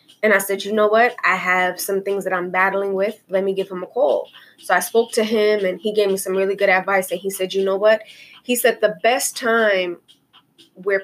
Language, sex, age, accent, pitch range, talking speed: English, female, 20-39, American, 185-225 Hz, 245 wpm